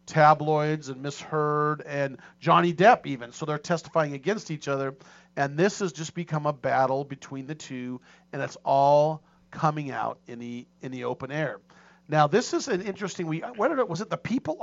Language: English